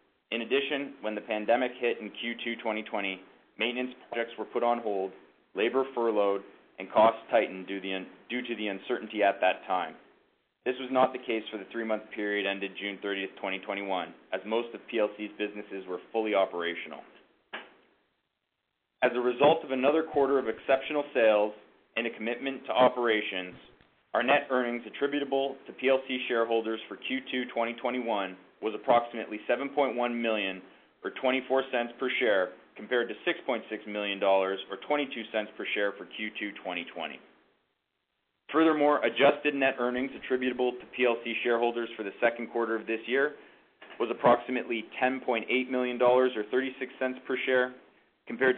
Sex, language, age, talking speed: male, English, 30-49, 145 wpm